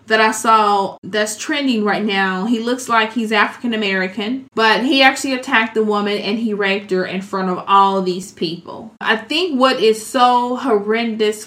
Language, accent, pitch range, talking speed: English, American, 195-225 Hz, 185 wpm